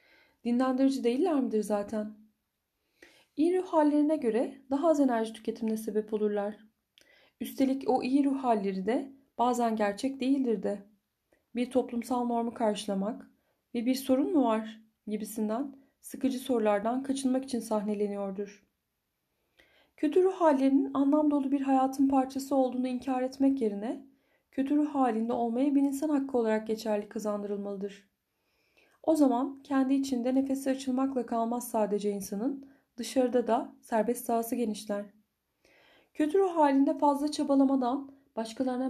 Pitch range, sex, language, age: 220-275 Hz, female, Turkish, 30-49